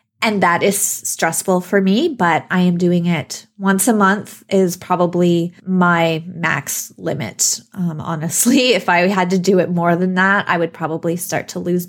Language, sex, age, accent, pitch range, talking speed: English, female, 20-39, American, 175-210 Hz, 180 wpm